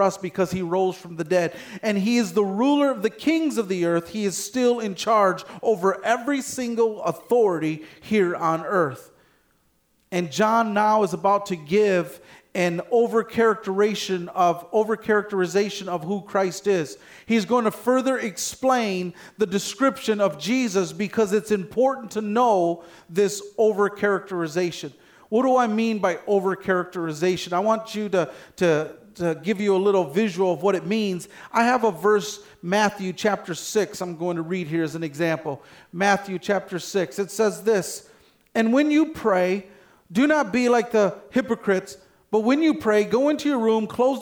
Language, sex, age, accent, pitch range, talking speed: English, male, 40-59, American, 185-225 Hz, 165 wpm